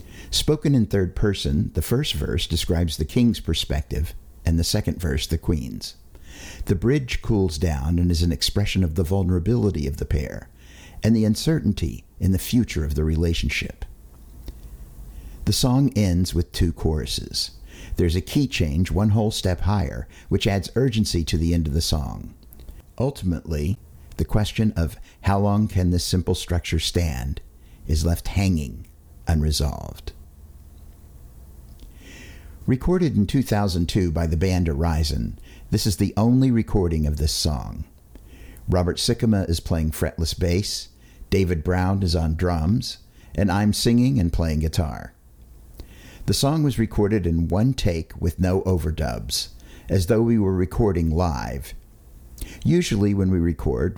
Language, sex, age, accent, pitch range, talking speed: English, male, 50-69, American, 75-100 Hz, 145 wpm